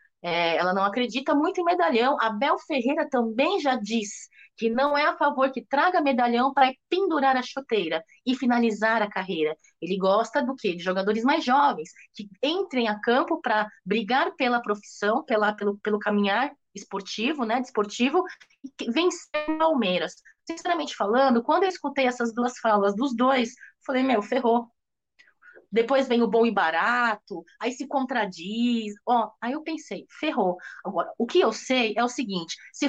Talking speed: 170 wpm